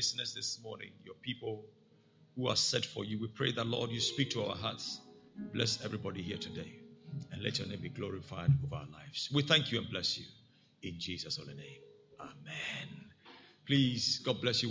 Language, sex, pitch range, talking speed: English, male, 105-140 Hz, 190 wpm